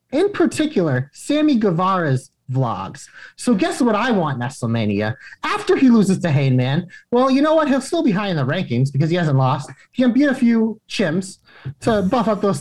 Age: 30-49